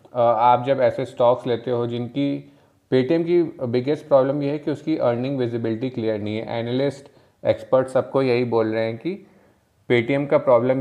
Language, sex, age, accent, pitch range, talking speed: Hindi, male, 20-39, native, 115-140 Hz, 170 wpm